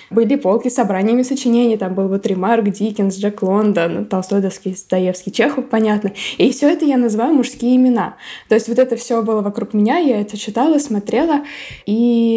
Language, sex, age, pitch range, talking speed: Russian, female, 20-39, 200-235 Hz, 175 wpm